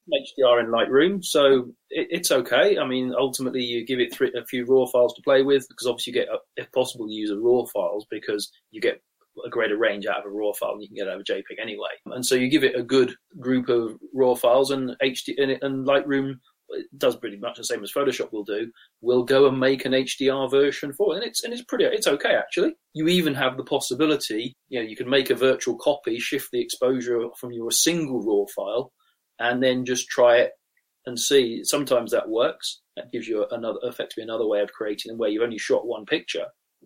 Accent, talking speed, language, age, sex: British, 220 wpm, English, 30-49, male